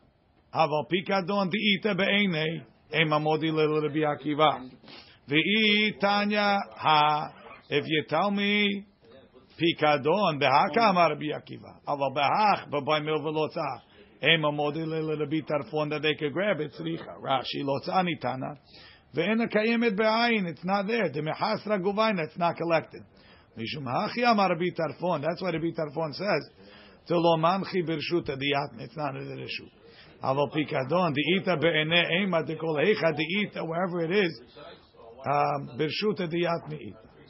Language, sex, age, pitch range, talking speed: English, male, 50-69, 150-190 Hz, 85 wpm